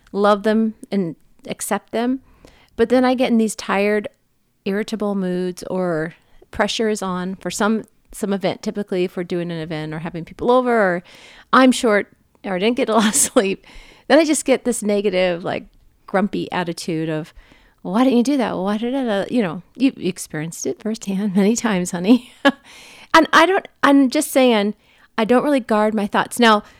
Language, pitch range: English, 190-240 Hz